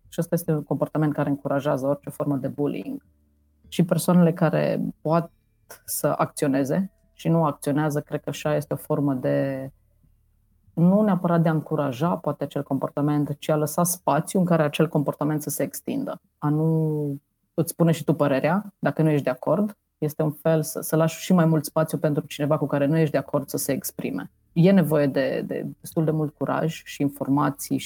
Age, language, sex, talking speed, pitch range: 30-49, Romanian, female, 190 wpm, 140-160 Hz